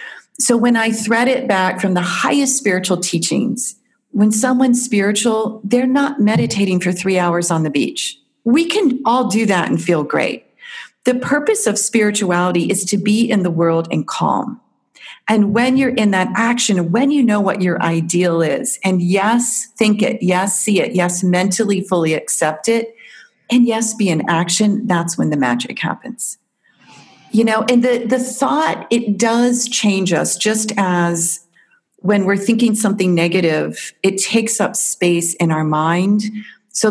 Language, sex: English, female